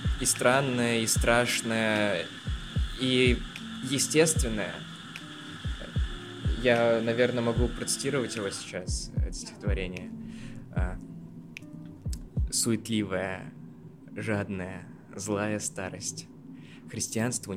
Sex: male